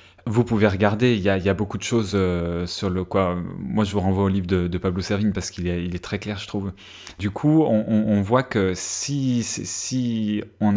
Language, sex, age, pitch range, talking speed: French, male, 20-39, 95-115 Hz, 250 wpm